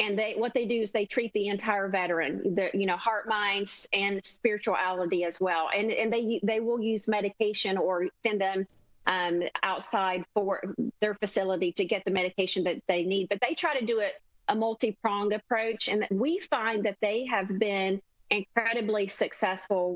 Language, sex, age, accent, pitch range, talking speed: English, female, 40-59, American, 195-240 Hz, 180 wpm